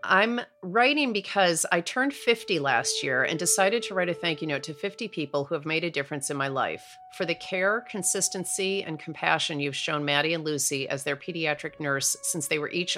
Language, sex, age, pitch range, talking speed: English, female, 40-59, 145-190 Hz, 215 wpm